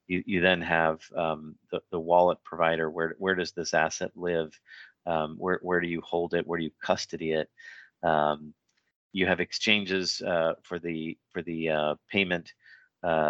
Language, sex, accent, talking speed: English, male, American, 170 wpm